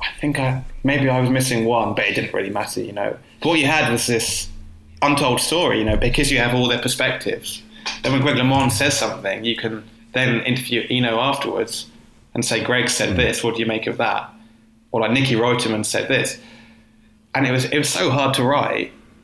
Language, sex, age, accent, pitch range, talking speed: English, male, 20-39, British, 115-140 Hz, 215 wpm